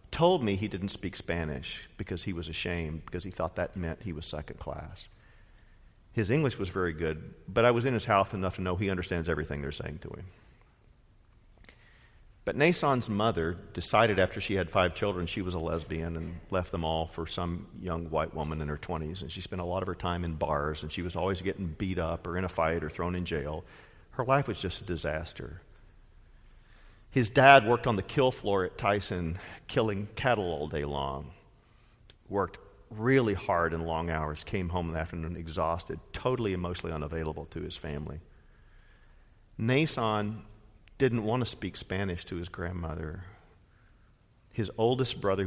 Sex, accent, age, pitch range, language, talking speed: male, American, 50-69, 85-105 Hz, English, 185 wpm